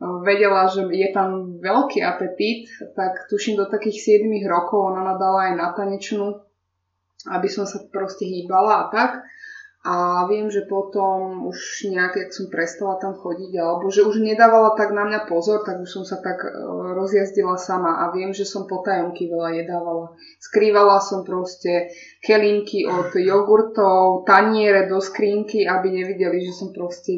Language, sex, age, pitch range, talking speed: Slovak, female, 20-39, 180-210 Hz, 155 wpm